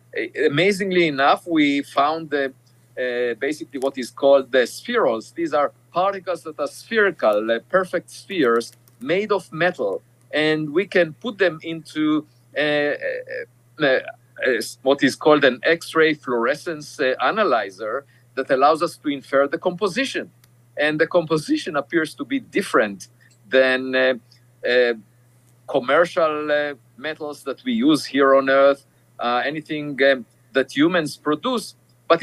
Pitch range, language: 125-170 Hz, English